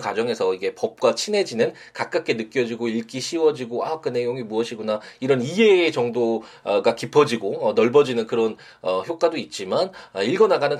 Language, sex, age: Korean, male, 20-39